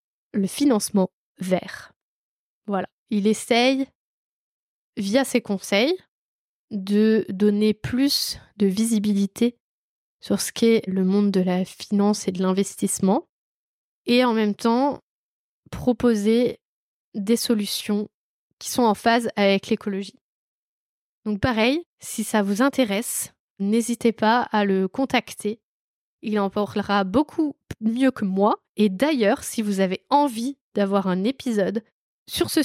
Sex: female